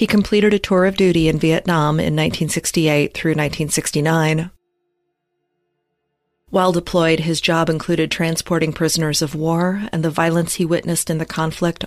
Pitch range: 150-180 Hz